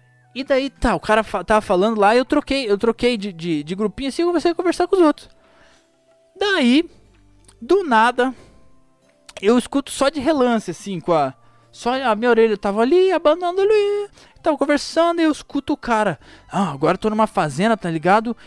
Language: Portuguese